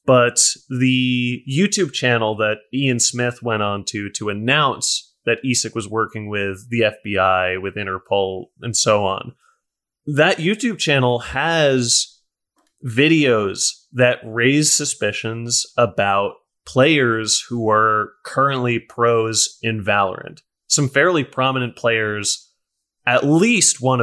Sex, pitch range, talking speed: male, 110-135 Hz, 115 wpm